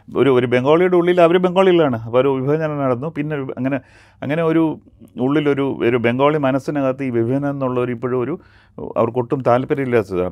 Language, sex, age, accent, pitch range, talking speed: Malayalam, male, 40-59, native, 110-145 Hz, 150 wpm